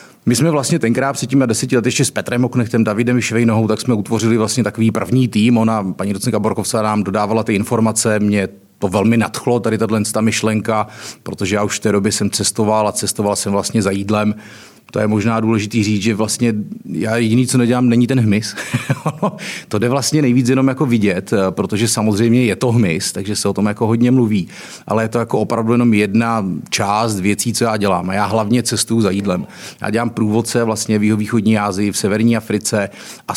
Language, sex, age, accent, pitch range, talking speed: Czech, male, 30-49, native, 105-120 Hz, 205 wpm